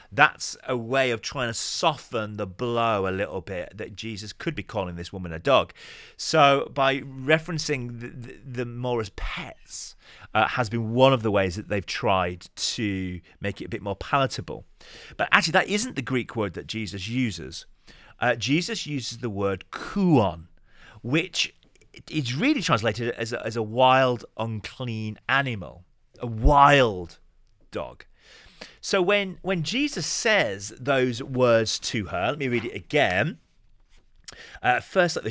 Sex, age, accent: male, 30-49, British